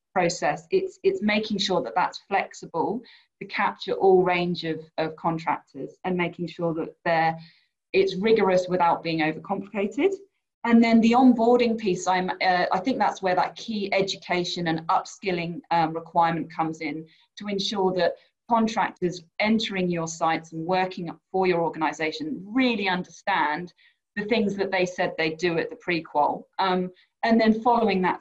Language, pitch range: English, 175-225 Hz